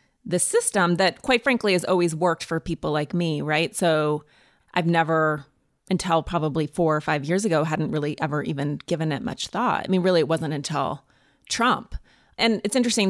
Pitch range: 160-190 Hz